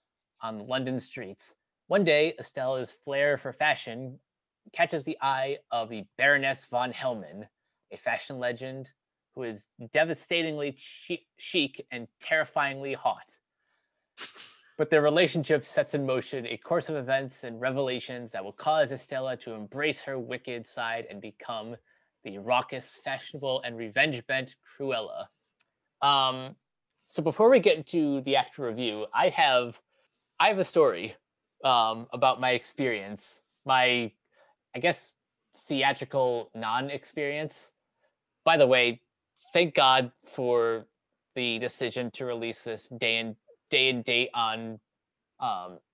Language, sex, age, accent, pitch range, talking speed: English, male, 20-39, American, 120-140 Hz, 130 wpm